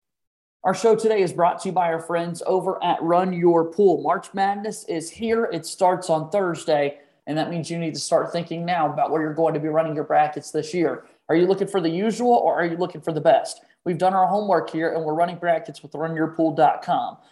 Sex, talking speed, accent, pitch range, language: male, 230 wpm, American, 160-185 Hz, English